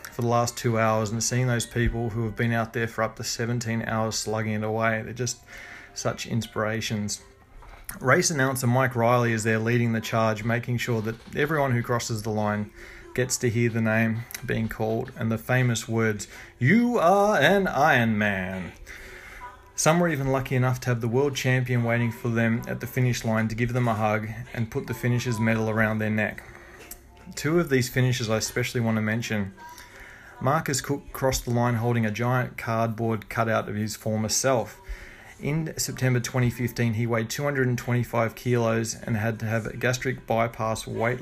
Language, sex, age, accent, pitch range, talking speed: English, male, 30-49, Australian, 110-125 Hz, 185 wpm